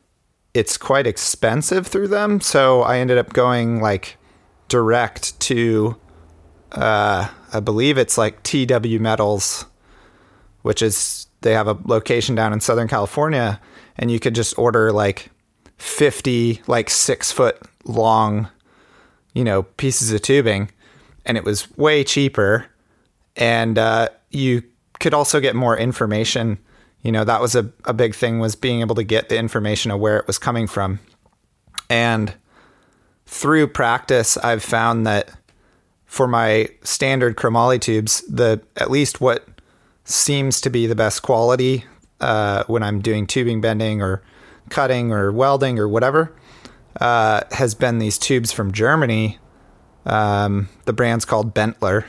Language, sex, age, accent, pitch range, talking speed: English, male, 30-49, American, 105-125 Hz, 145 wpm